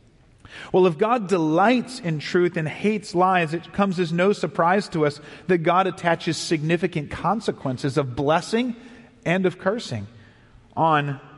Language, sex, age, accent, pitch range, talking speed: English, male, 40-59, American, 140-185 Hz, 140 wpm